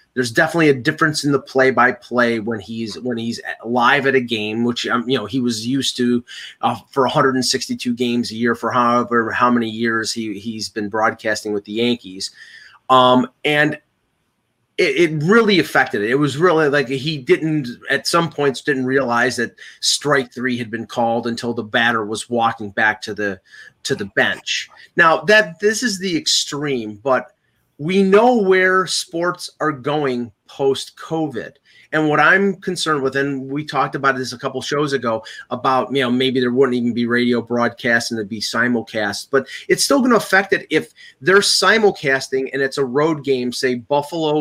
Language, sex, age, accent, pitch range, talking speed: English, male, 30-49, American, 120-150 Hz, 185 wpm